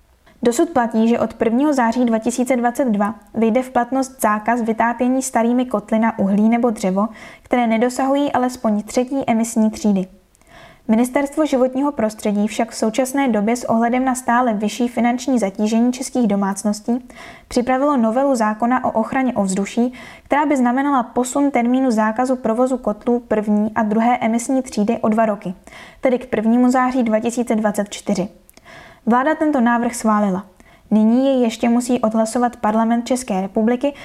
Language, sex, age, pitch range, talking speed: Czech, female, 10-29, 215-255 Hz, 140 wpm